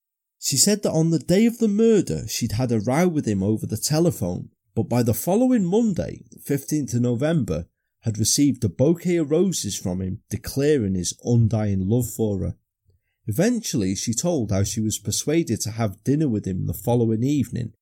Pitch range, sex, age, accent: 105-150 Hz, male, 30-49, British